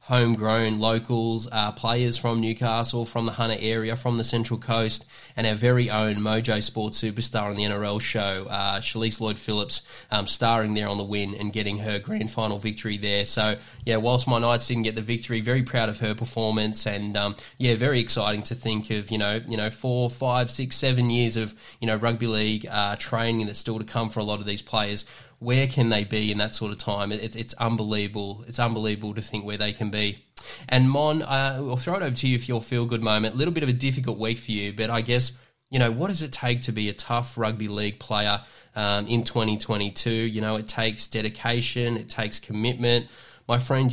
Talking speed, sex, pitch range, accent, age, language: 220 wpm, male, 110-120 Hz, Australian, 10-29, English